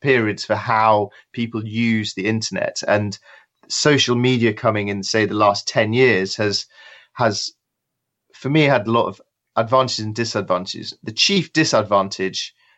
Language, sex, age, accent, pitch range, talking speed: English, male, 30-49, British, 100-115 Hz, 145 wpm